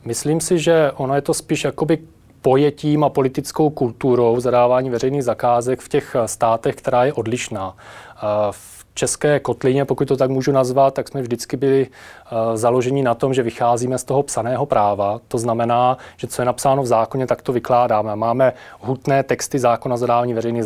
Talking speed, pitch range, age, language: 170 wpm, 120-135 Hz, 30-49, Czech